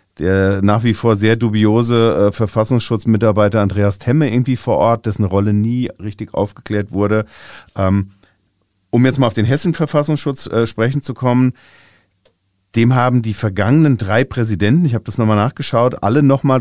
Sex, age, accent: male, 40-59, German